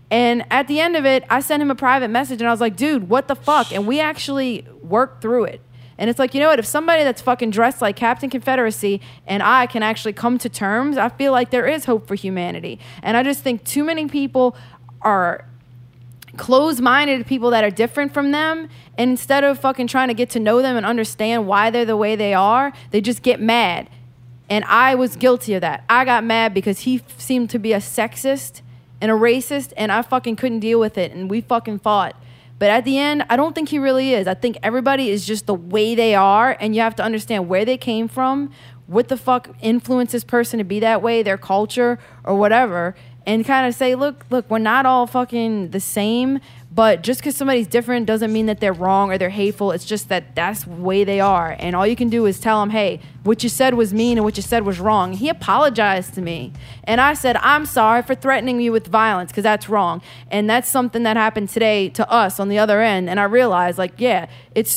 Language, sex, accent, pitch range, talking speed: English, female, American, 200-255 Hz, 230 wpm